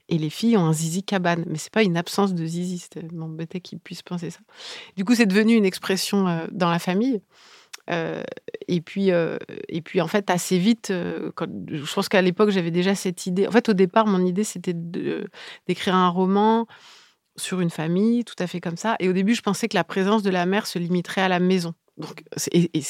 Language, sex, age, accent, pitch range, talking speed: French, female, 30-49, French, 170-205 Hz, 235 wpm